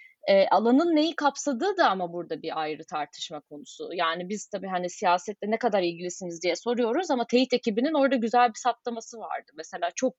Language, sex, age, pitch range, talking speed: Turkish, female, 30-49, 180-265 Hz, 185 wpm